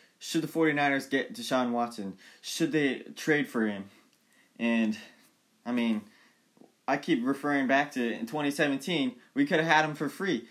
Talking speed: 160 wpm